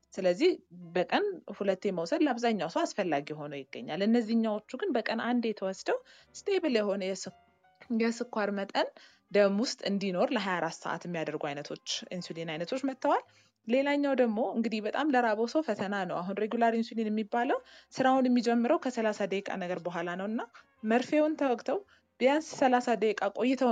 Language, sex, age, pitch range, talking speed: English, female, 20-39, 190-255 Hz, 110 wpm